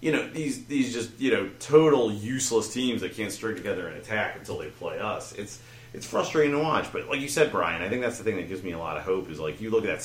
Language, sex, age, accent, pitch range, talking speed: English, male, 30-49, American, 90-125 Hz, 285 wpm